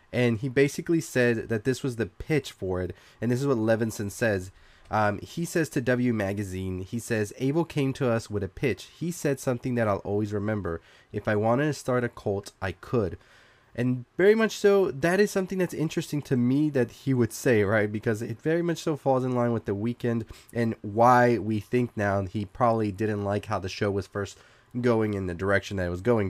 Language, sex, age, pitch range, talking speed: English, male, 20-39, 105-130 Hz, 220 wpm